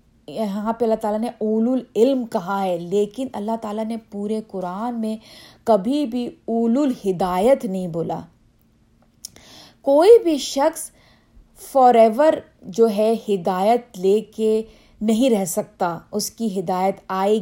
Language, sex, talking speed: Urdu, female, 135 wpm